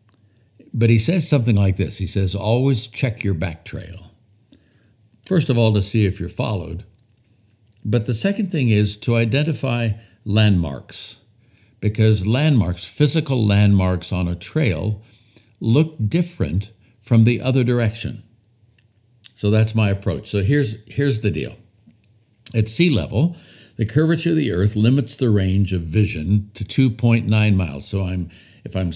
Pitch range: 100-125 Hz